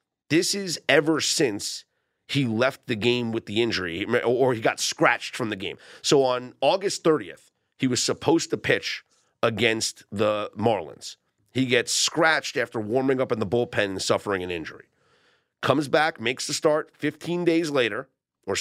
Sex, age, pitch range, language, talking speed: male, 40-59, 115-160 Hz, English, 170 wpm